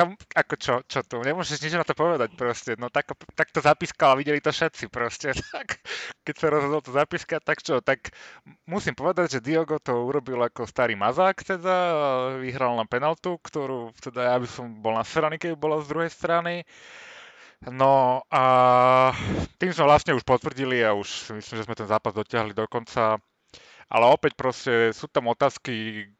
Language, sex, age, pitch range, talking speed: Slovak, male, 30-49, 115-150 Hz, 170 wpm